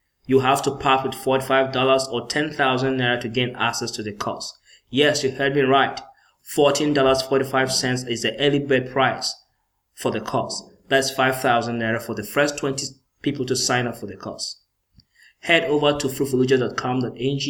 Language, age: English, 20-39